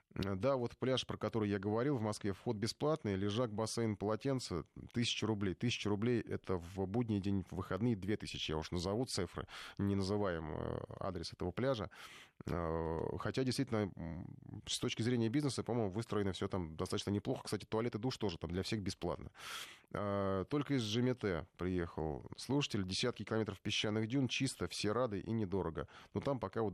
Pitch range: 100-125 Hz